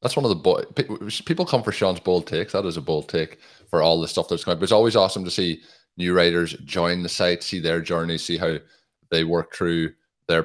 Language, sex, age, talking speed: English, male, 20-39, 240 wpm